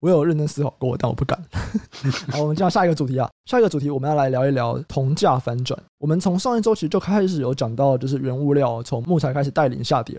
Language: Chinese